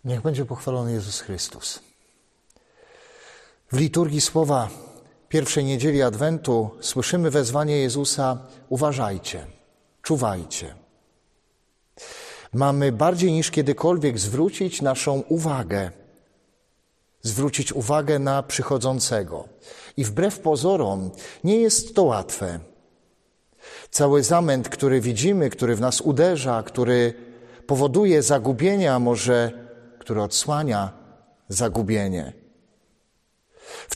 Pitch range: 120-155 Hz